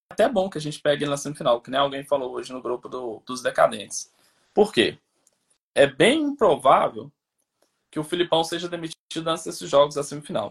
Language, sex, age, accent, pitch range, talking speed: Portuguese, male, 20-39, Brazilian, 140-180 Hz, 195 wpm